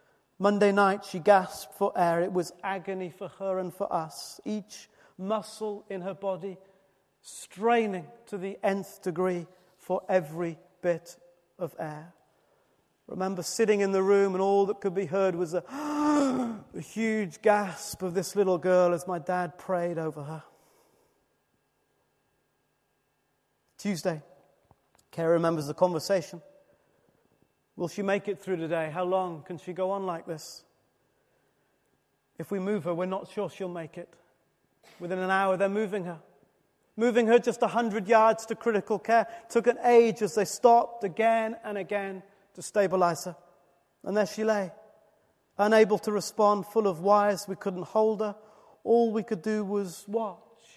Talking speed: 155 wpm